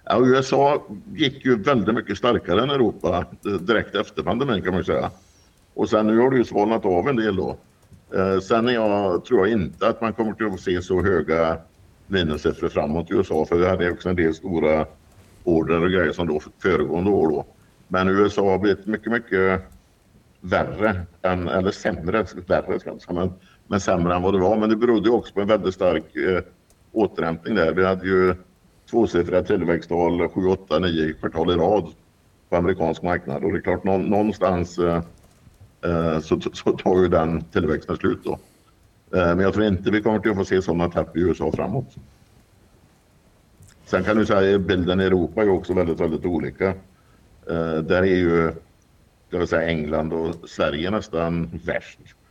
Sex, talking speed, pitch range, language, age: male, 180 wpm, 85-100 Hz, Swedish, 60-79